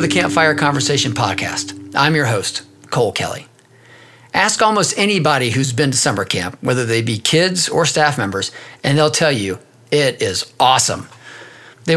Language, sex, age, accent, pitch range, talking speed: English, male, 40-59, American, 120-165 Hz, 160 wpm